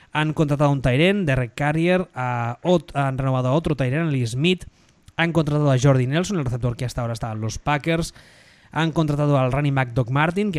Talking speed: 200 wpm